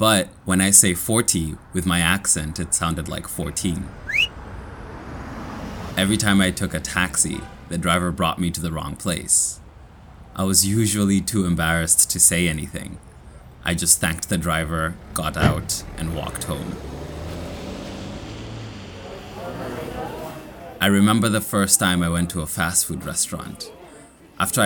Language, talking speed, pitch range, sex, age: Italian, 140 wpm, 85-105 Hz, male, 20-39